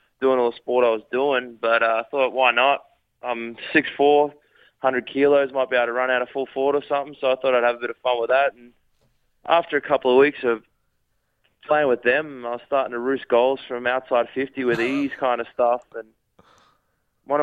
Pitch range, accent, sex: 120-135 Hz, Australian, male